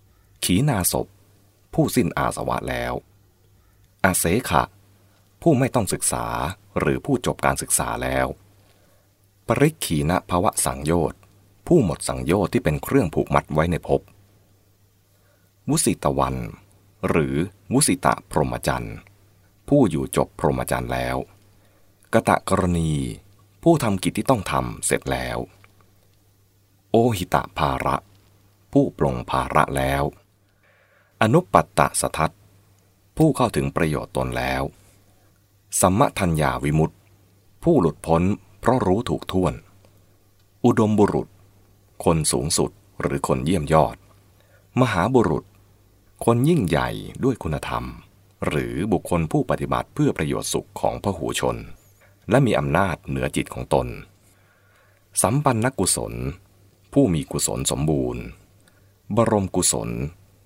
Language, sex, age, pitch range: English, male, 30-49, 80-100 Hz